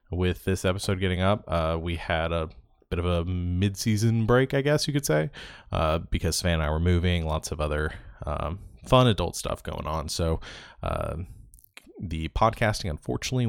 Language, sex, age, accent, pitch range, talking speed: English, male, 20-39, American, 80-105 Hz, 180 wpm